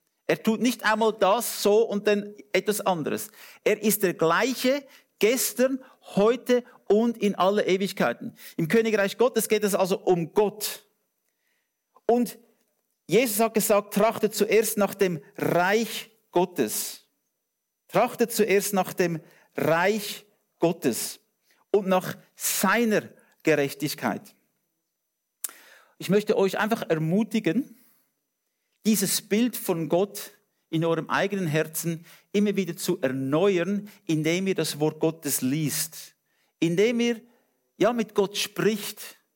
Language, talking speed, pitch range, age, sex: English, 115 wpm, 170-215 Hz, 50-69, male